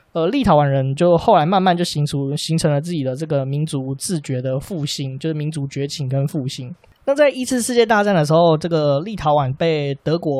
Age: 20-39